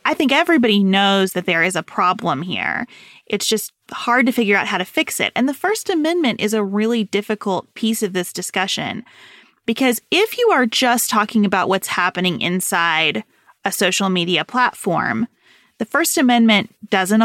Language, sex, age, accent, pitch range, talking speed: English, female, 30-49, American, 185-245 Hz, 175 wpm